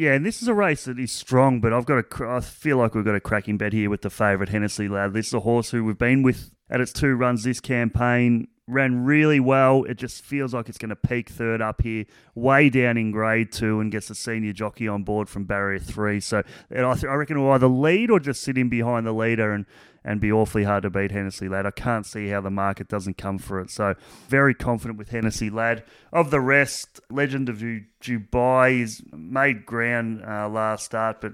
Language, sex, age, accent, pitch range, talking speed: English, male, 30-49, Australian, 105-125 Hz, 240 wpm